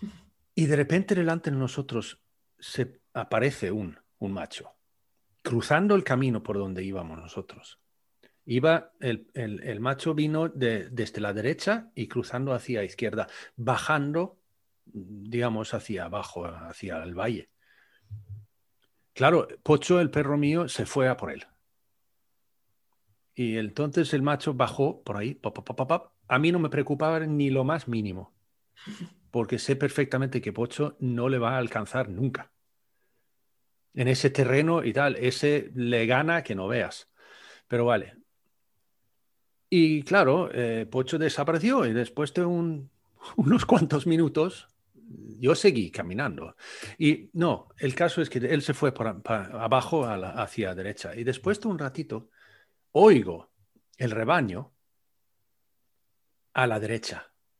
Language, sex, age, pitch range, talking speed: Spanish, male, 40-59, 110-150 Hz, 135 wpm